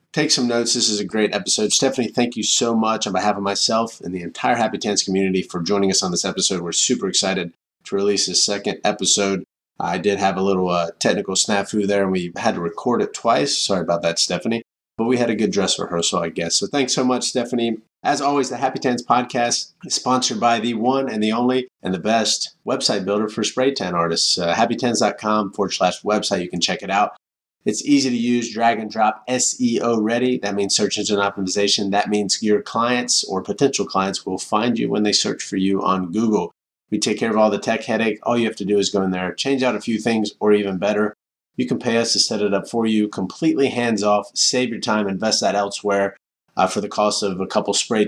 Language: English